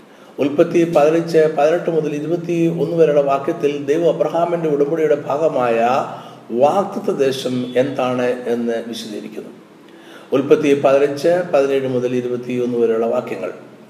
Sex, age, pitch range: male, 50-69, 125-175 Hz